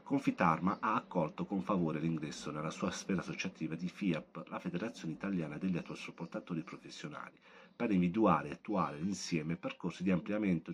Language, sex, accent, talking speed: Italian, male, native, 145 wpm